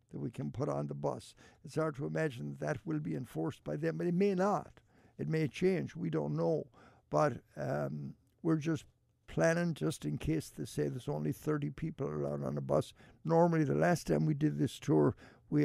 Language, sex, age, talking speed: English, male, 60-79, 210 wpm